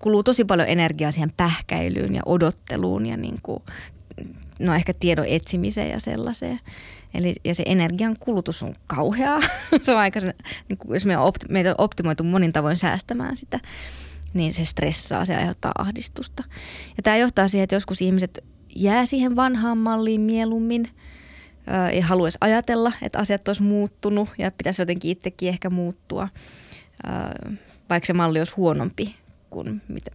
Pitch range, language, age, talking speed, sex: 160-195 Hz, Finnish, 20-39, 130 wpm, female